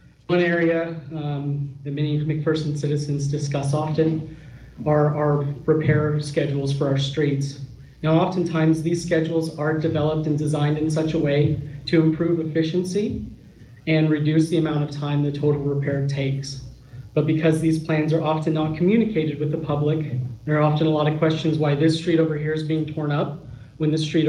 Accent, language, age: American, English, 40-59